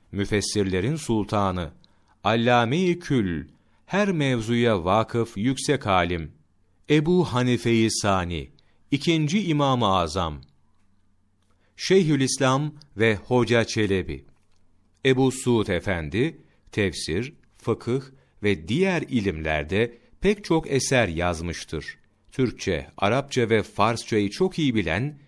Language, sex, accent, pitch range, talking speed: Turkish, male, native, 95-135 Hz, 95 wpm